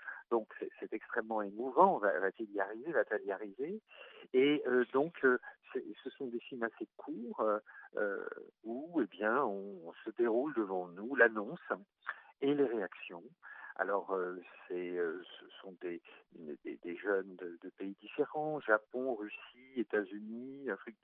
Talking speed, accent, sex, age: 150 wpm, French, male, 50-69